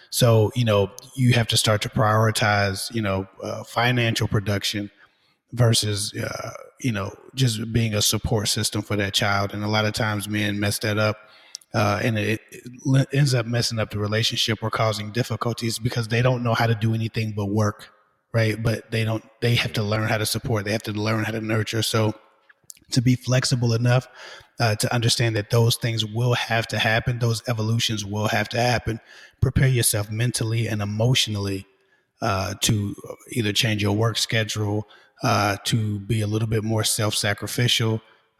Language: English